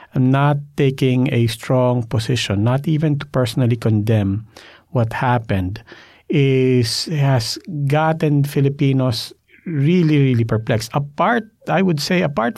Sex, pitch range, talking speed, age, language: male, 120-155 Hz, 115 wpm, 50-69, English